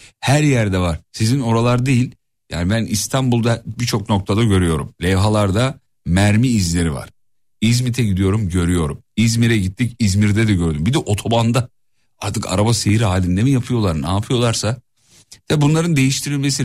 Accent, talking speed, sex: native, 140 wpm, male